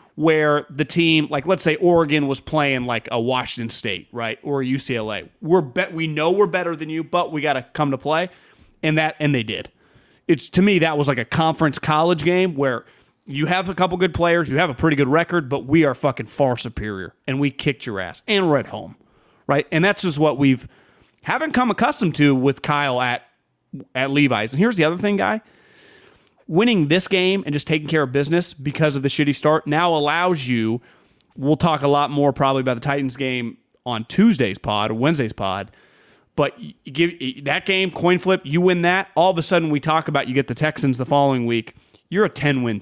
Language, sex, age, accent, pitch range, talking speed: English, male, 30-49, American, 135-170 Hz, 220 wpm